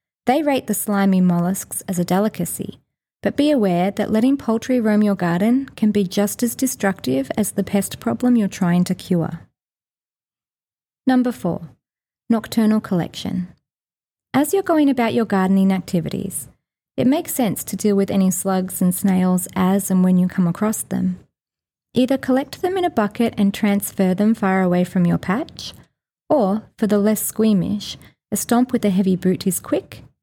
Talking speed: 170 wpm